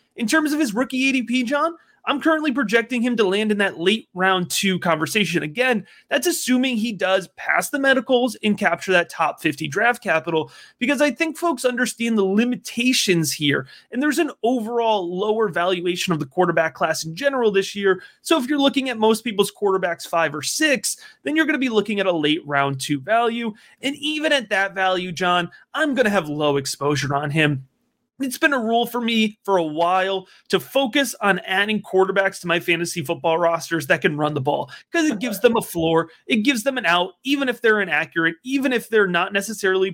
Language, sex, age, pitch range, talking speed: English, male, 30-49, 180-255 Hz, 205 wpm